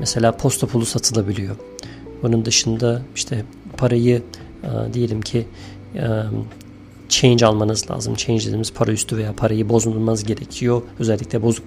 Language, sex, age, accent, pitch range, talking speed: Turkish, male, 40-59, native, 110-135 Hz, 130 wpm